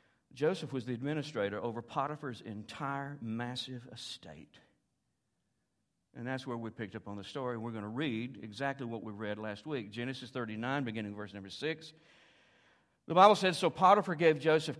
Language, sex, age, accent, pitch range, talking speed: English, male, 60-79, American, 115-155 Hz, 165 wpm